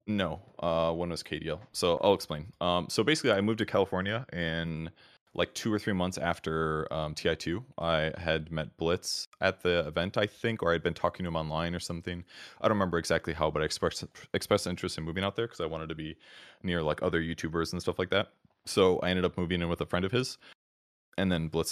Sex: male